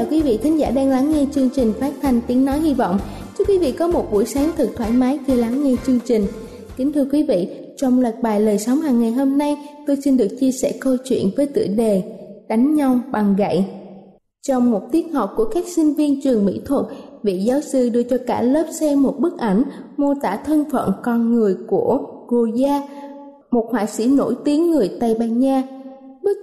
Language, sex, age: Vietnamese, female, 20-39